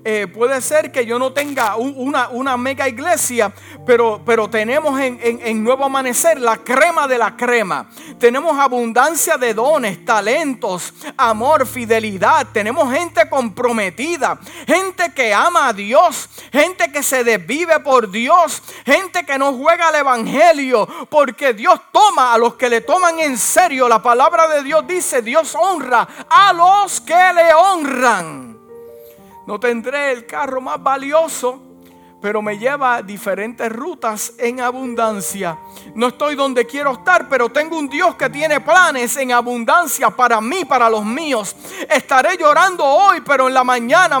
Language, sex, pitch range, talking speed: Spanish, male, 235-315 Hz, 155 wpm